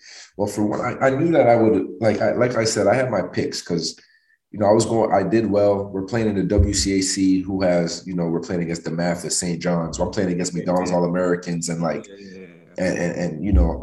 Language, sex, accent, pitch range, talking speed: English, male, American, 90-100 Hz, 250 wpm